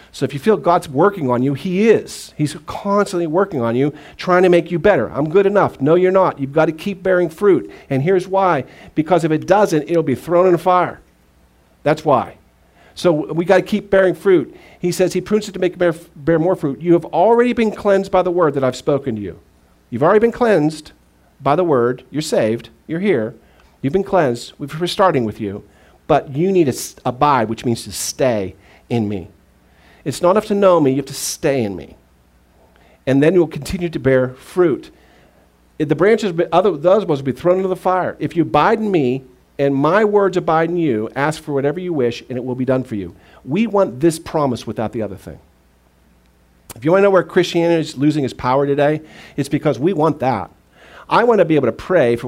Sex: male